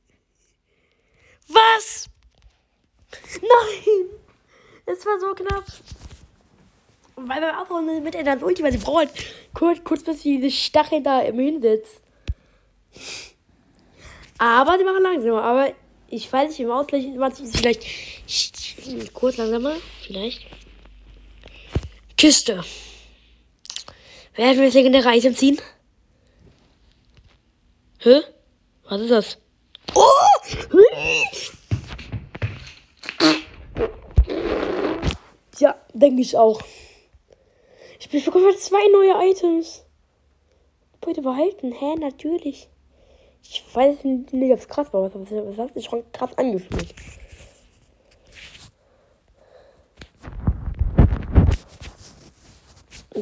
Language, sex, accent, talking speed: German, female, German, 90 wpm